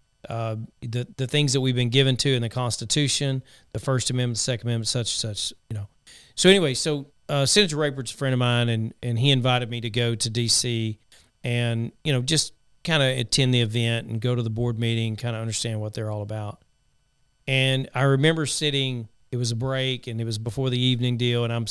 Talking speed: 220 wpm